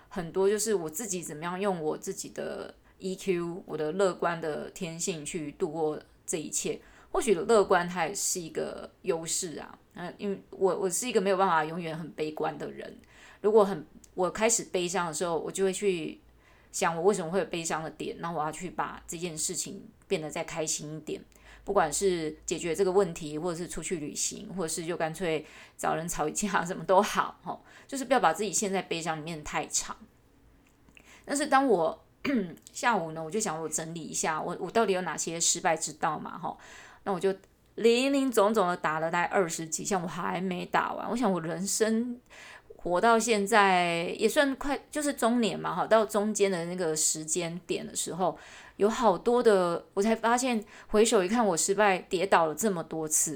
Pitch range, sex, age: 165-210 Hz, female, 20-39